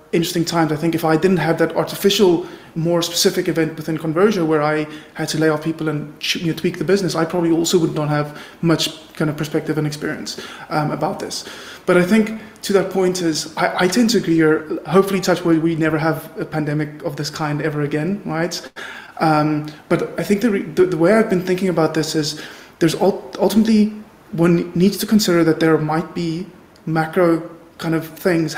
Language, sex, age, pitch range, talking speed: English, male, 20-39, 160-185 Hz, 200 wpm